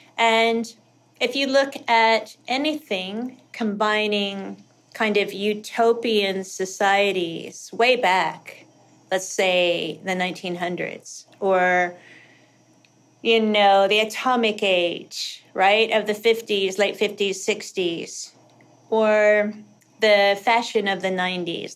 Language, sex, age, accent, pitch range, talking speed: English, female, 40-59, American, 185-225 Hz, 100 wpm